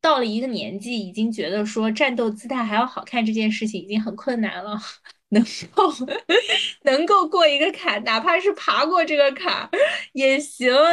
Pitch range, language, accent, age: 215-285 Hz, Chinese, native, 20-39